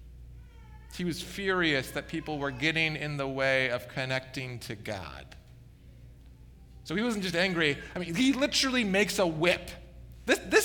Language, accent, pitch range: English, American, 120-185 Hz